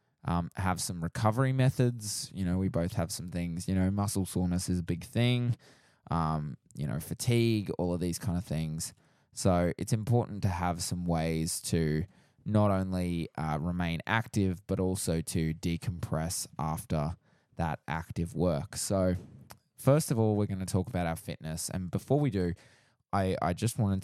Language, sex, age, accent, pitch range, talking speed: English, male, 20-39, Australian, 85-110 Hz, 175 wpm